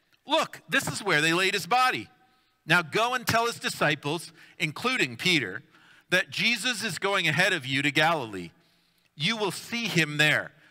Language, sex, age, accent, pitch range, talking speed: English, male, 40-59, American, 145-195 Hz, 170 wpm